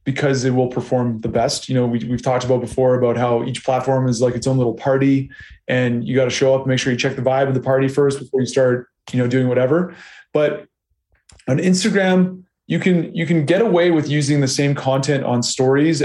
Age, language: 20-39, English